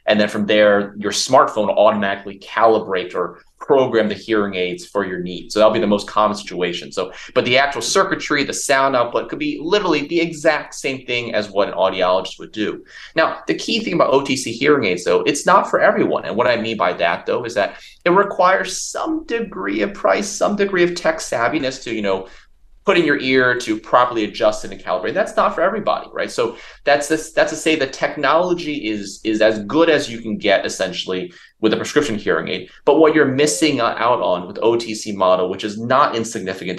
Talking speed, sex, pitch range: 210 wpm, male, 100-145 Hz